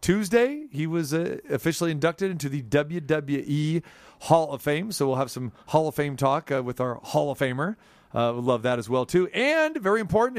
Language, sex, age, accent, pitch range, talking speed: English, male, 40-59, American, 140-175 Hz, 215 wpm